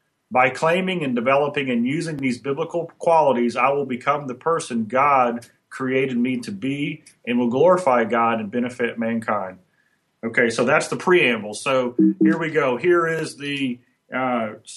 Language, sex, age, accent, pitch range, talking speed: English, male, 40-59, American, 125-185 Hz, 160 wpm